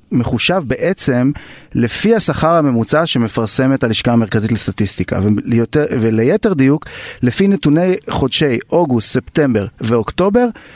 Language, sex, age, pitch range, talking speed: Hebrew, male, 30-49, 115-150 Hz, 95 wpm